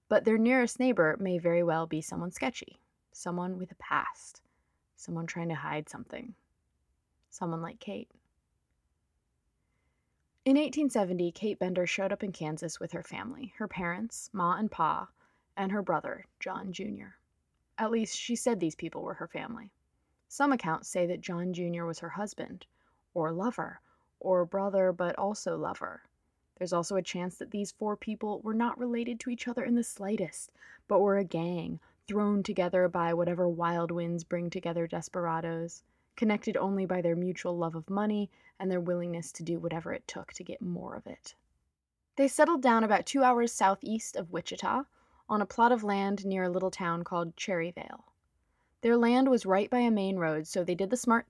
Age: 20-39